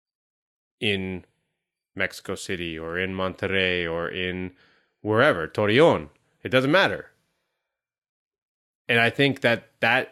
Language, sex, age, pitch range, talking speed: English, male, 30-49, 125-175 Hz, 100 wpm